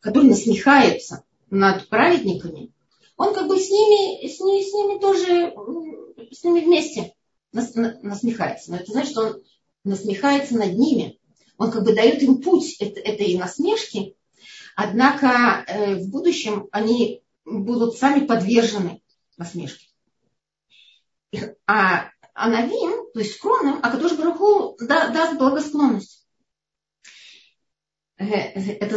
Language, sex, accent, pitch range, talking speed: Russian, female, native, 195-275 Hz, 115 wpm